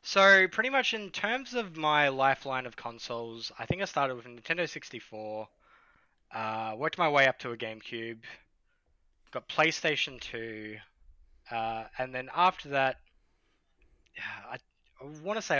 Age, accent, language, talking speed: 10-29, Australian, English, 150 wpm